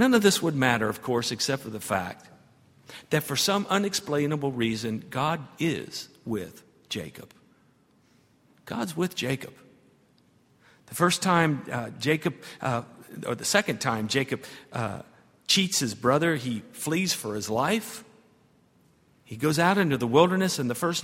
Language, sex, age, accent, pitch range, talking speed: English, male, 50-69, American, 125-190 Hz, 150 wpm